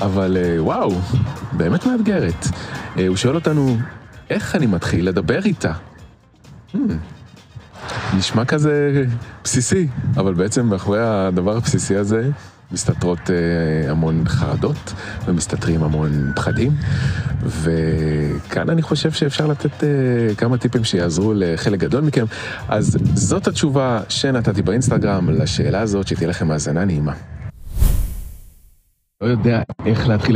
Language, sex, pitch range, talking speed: Hebrew, male, 95-135 Hz, 115 wpm